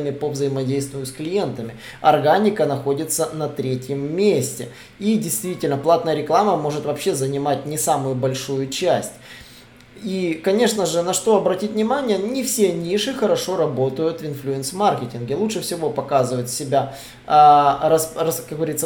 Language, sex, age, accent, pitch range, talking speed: Russian, male, 20-39, native, 135-175 Hz, 125 wpm